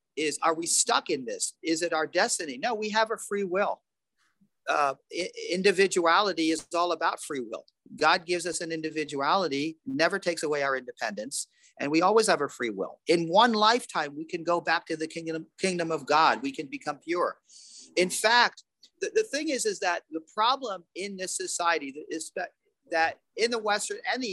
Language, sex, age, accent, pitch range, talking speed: English, male, 40-59, American, 160-220 Hz, 190 wpm